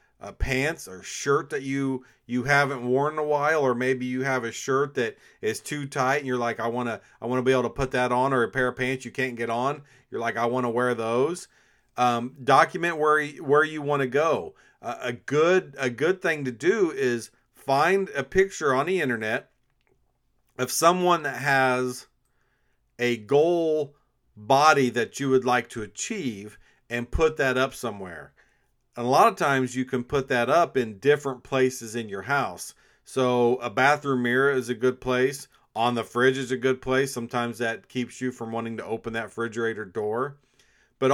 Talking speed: 200 wpm